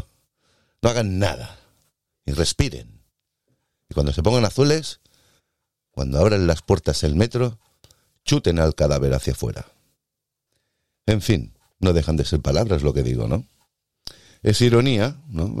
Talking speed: 135 wpm